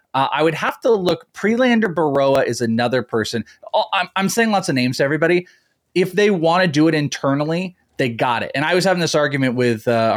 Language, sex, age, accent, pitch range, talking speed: English, male, 30-49, American, 120-160 Hz, 220 wpm